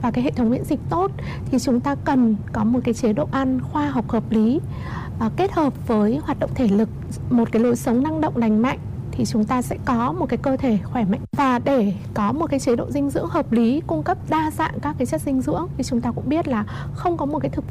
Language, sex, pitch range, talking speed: Vietnamese, female, 205-260 Hz, 270 wpm